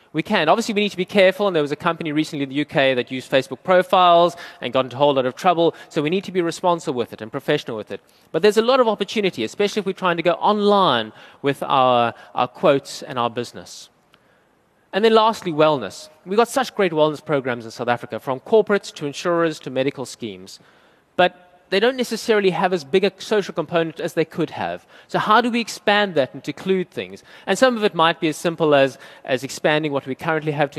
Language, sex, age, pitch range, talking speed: English, male, 30-49, 135-195 Hz, 235 wpm